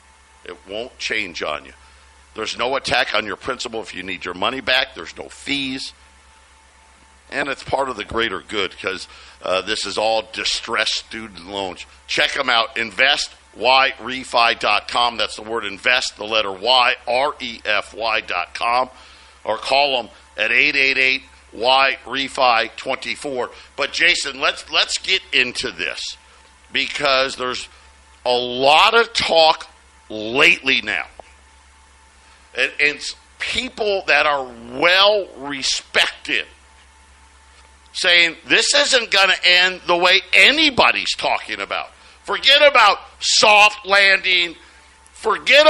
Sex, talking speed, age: male, 115 wpm, 50-69